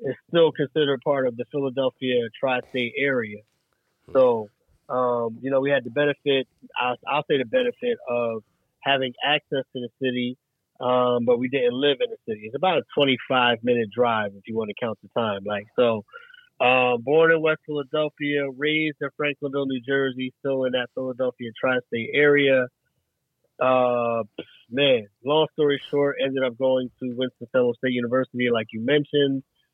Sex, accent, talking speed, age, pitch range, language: male, American, 165 wpm, 30-49, 125-145 Hz, English